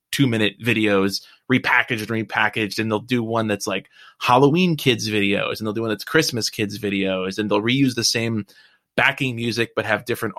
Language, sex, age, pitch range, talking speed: English, male, 20-39, 110-145 Hz, 190 wpm